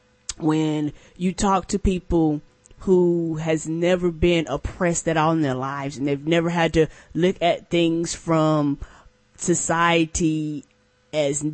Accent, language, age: American, English, 20-39